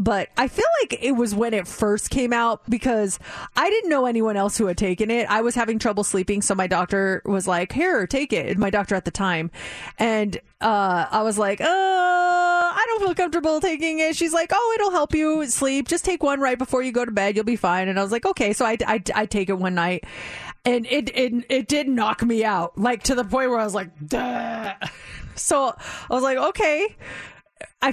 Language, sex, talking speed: English, female, 230 wpm